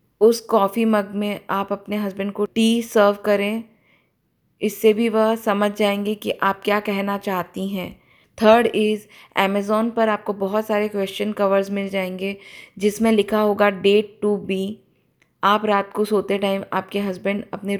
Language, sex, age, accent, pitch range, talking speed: Hindi, female, 20-39, native, 195-205 Hz, 160 wpm